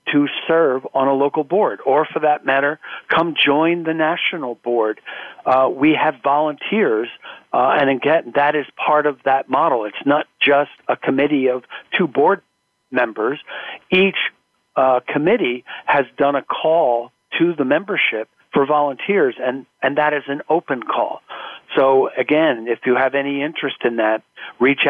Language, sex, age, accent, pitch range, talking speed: English, male, 50-69, American, 130-160 Hz, 160 wpm